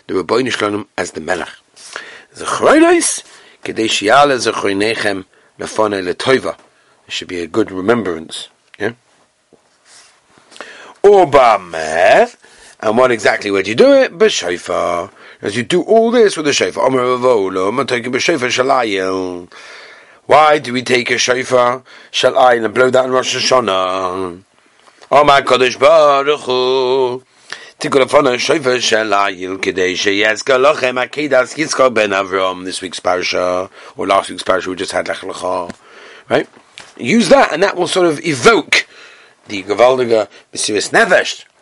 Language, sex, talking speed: English, male, 125 wpm